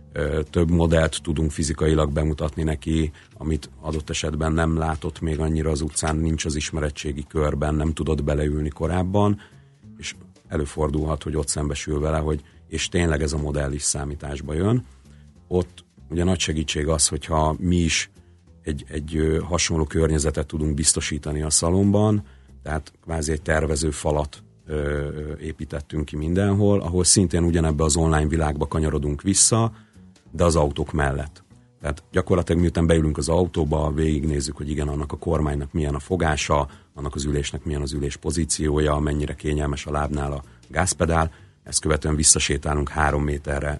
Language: Hungarian